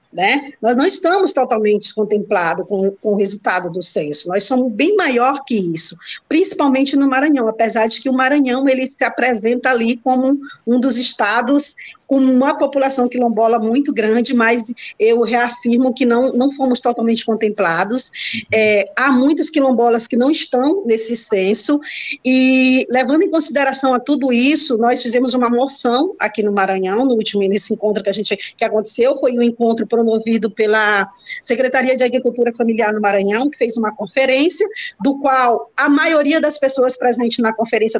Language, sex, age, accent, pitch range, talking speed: Portuguese, female, 20-39, Brazilian, 215-275 Hz, 170 wpm